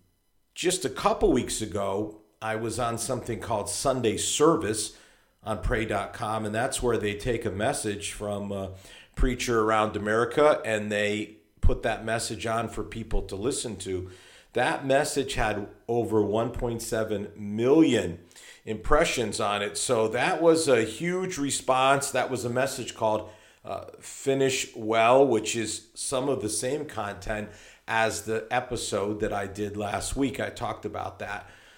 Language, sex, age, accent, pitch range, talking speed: English, male, 50-69, American, 105-120 Hz, 150 wpm